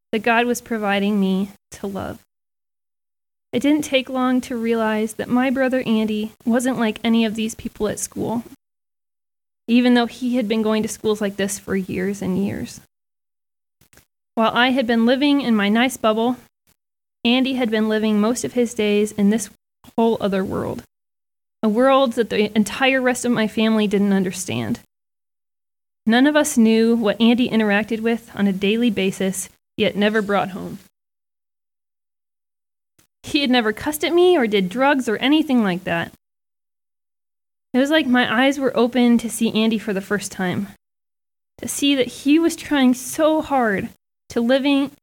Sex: female